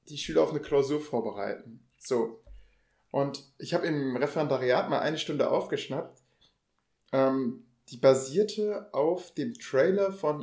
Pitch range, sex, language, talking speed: 120-150 Hz, male, German, 130 wpm